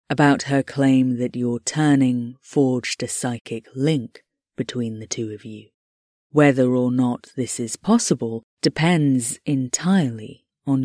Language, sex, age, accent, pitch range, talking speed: English, female, 30-49, British, 120-155 Hz, 135 wpm